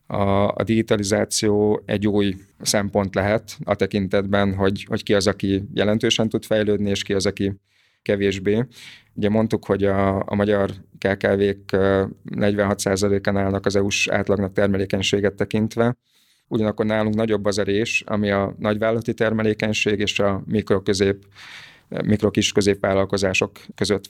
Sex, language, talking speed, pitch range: male, Hungarian, 125 wpm, 100-105 Hz